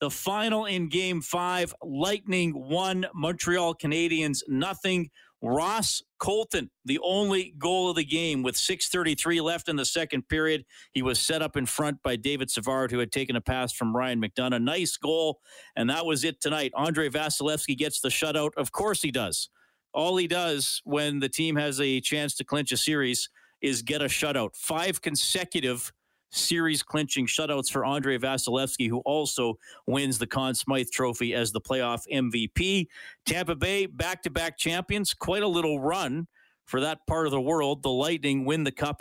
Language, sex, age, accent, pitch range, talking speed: English, male, 40-59, American, 125-170 Hz, 170 wpm